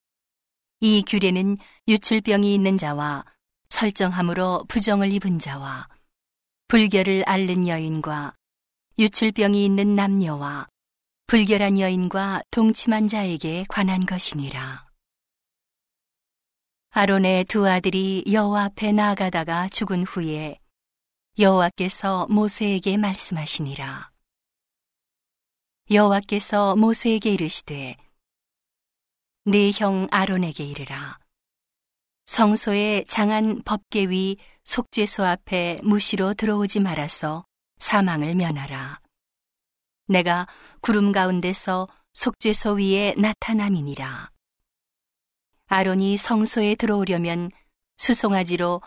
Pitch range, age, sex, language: 170-210 Hz, 40-59, female, Korean